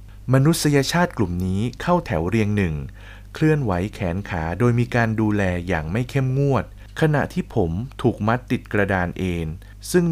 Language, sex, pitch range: Thai, male, 95-125 Hz